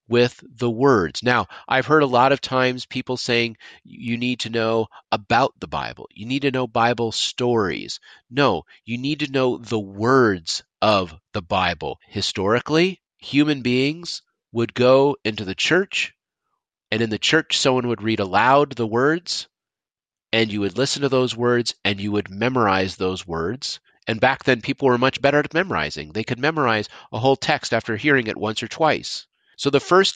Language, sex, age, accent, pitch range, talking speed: English, male, 40-59, American, 110-140 Hz, 180 wpm